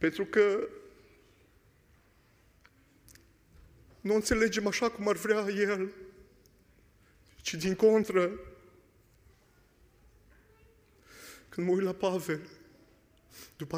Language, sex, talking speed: Romanian, male, 80 wpm